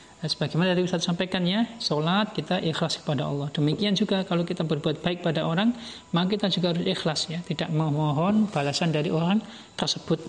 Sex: male